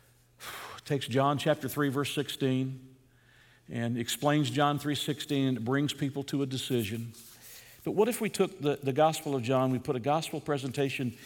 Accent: American